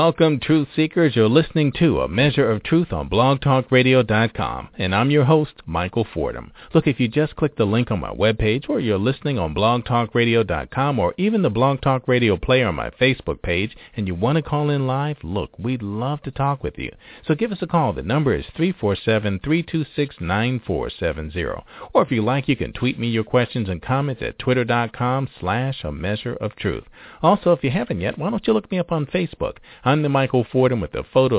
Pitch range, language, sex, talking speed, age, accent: 110-155 Hz, English, male, 205 wpm, 50-69, American